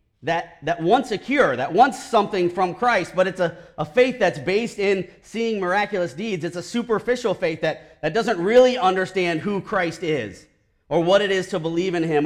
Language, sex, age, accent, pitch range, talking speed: English, male, 40-59, American, 140-185 Hz, 200 wpm